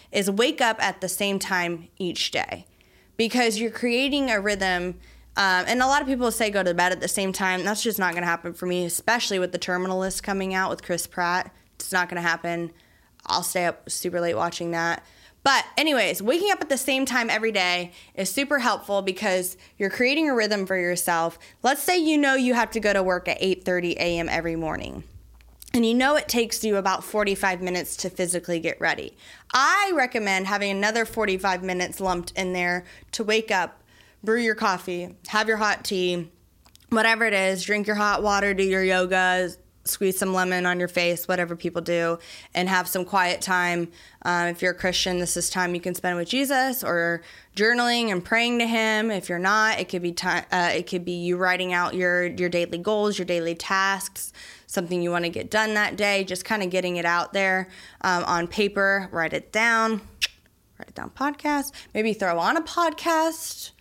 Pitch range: 180-220 Hz